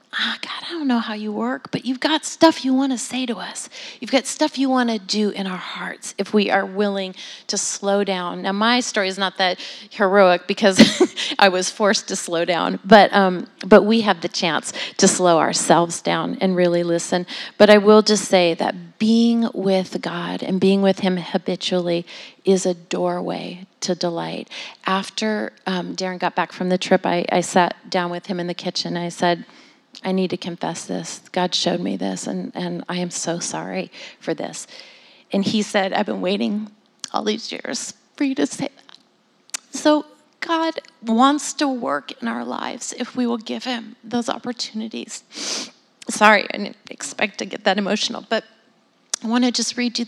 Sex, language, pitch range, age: female, English, 185-240 Hz, 30-49